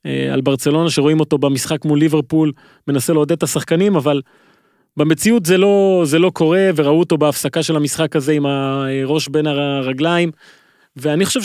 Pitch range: 140-175 Hz